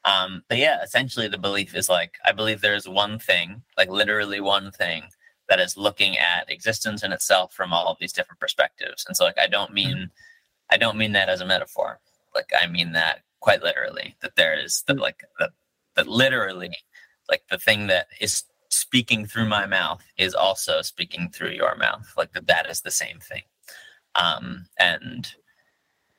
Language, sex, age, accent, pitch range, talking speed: English, male, 20-39, American, 90-110 Hz, 185 wpm